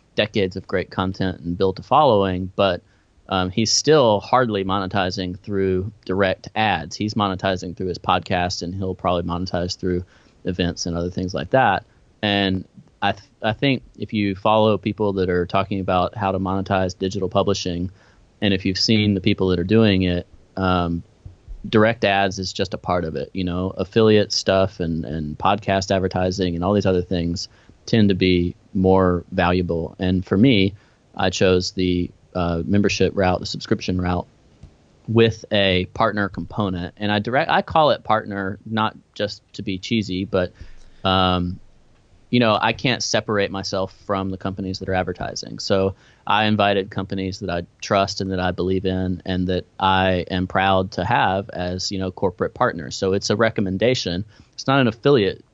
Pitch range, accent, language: 90-100 Hz, American, English